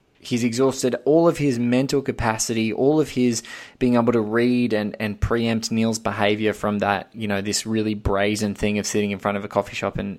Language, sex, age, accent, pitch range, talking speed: English, male, 20-39, Australian, 105-125 Hz, 210 wpm